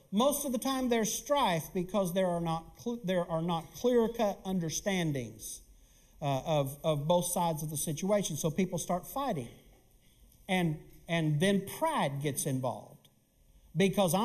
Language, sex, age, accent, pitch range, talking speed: English, male, 50-69, American, 195-260 Hz, 145 wpm